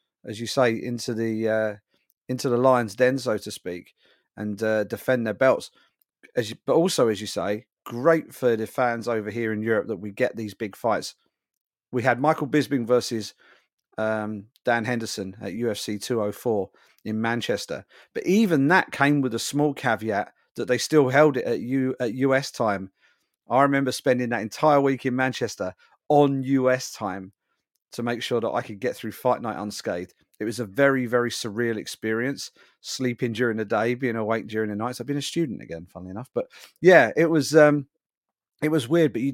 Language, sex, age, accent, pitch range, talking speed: English, male, 40-59, British, 105-130 Hz, 195 wpm